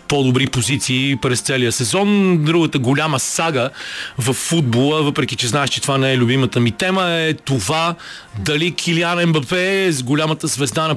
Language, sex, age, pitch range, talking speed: Bulgarian, male, 40-59, 125-155 Hz, 165 wpm